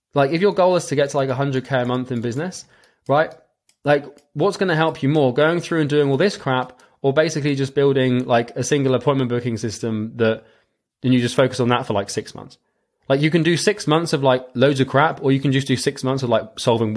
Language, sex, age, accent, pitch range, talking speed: English, male, 20-39, British, 115-145 Hz, 250 wpm